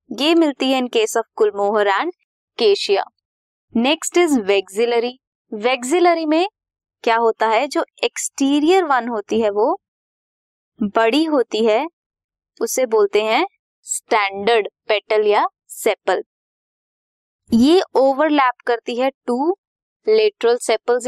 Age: 20-39